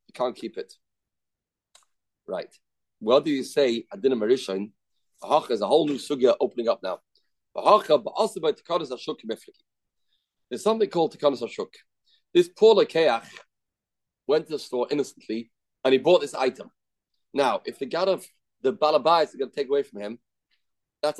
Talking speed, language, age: 145 wpm, English, 30-49